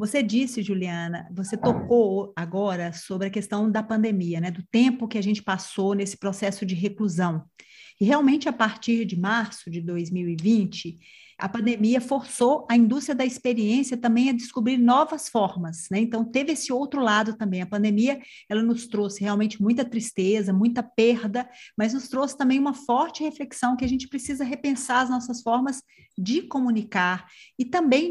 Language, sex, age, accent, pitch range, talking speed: Portuguese, female, 40-59, Brazilian, 195-245 Hz, 165 wpm